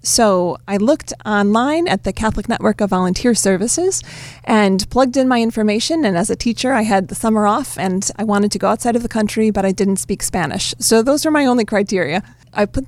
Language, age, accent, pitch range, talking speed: English, 30-49, American, 190-225 Hz, 220 wpm